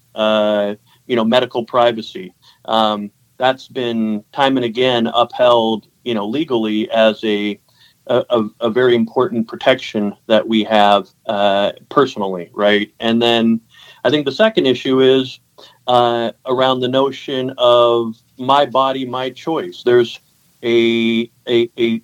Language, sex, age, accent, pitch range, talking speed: English, male, 40-59, American, 110-125 Hz, 135 wpm